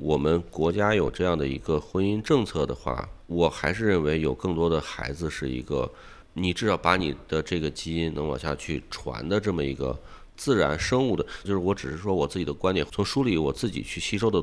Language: Chinese